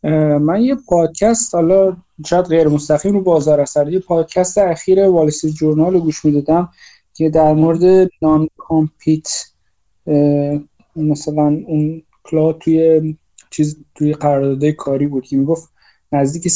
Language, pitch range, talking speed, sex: Persian, 145-170 Hz, 125 wpm, male